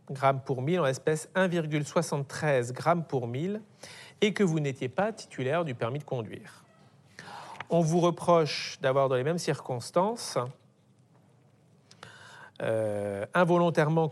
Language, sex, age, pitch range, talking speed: French, male, 40-59, 135-170 Hz, 125 wpm